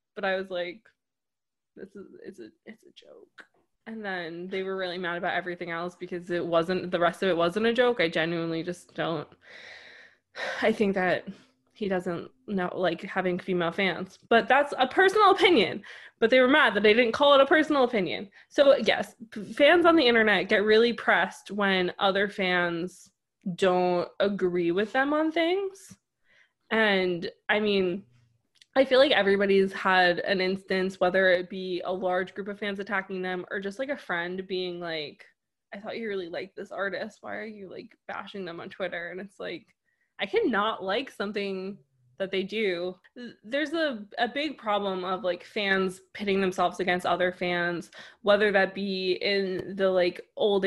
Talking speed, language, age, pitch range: 180 wpm, English, 20-39, 180-210 Hz